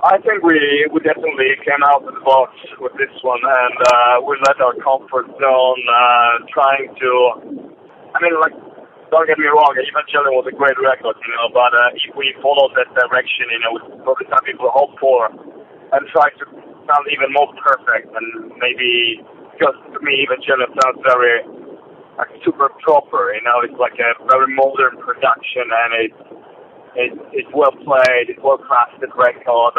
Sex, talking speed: male, 175 wpm